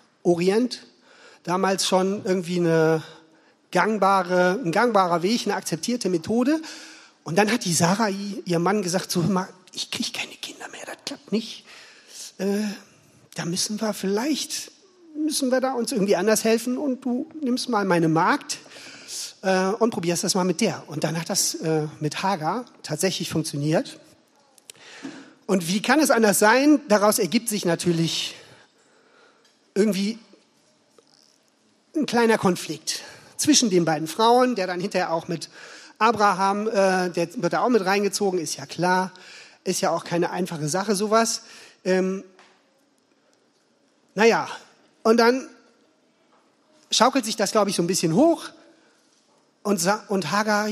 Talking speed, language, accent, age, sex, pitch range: 140 wpm, German, German, 40-59, male, 180-240 Hz